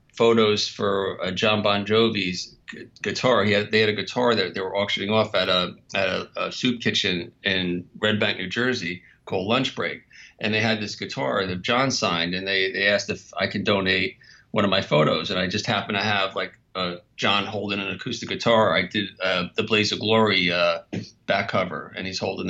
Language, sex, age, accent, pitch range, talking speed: English, male, 40-59, American, 95-110 Hz, 215 wpm